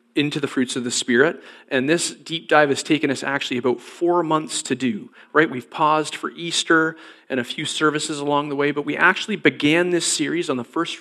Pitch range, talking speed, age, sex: 130-170 Hz, 220 wpm, 40-59, male